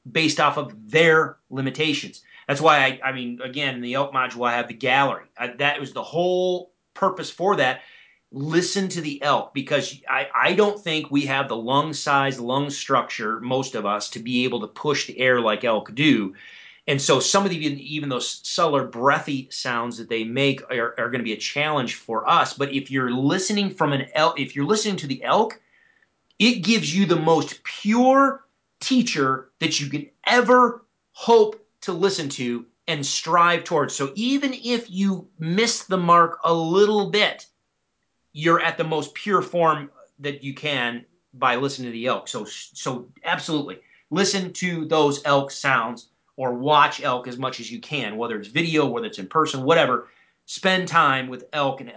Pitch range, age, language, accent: 130-175 Hz, 30-49, English, American